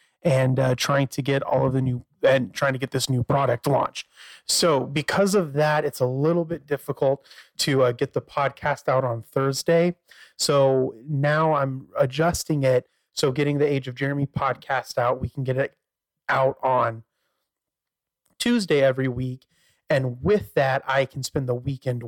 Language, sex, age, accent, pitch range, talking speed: English, male, 30-49, American, 125-150 Hz, 175 wpm